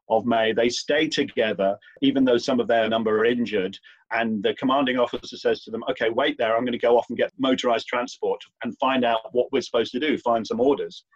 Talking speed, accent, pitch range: 225 wpm, British, 115-155 Hz